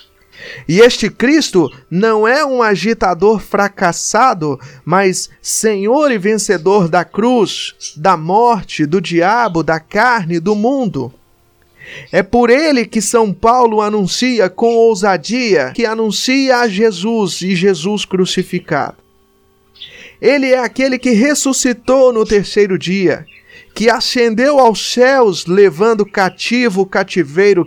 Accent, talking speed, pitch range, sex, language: Brazilian, 115 wpm, 170-230 Hz, male, Portuguese